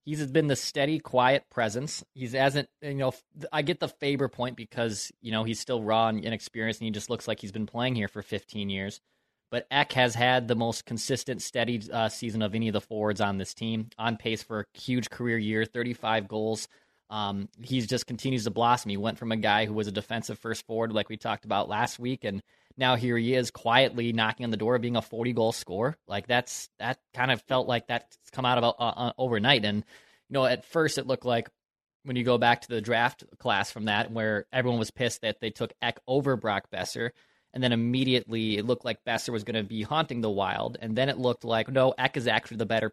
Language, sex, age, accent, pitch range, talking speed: English, male, 20-39, American, 110-125 Hz, 240 wpm